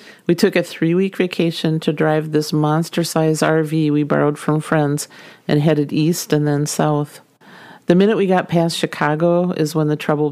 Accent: American